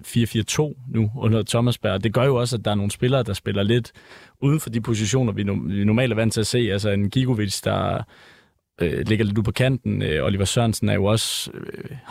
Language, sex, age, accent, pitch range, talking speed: Danish, male, 20-39, native, 100-120 Hz, 225 wpm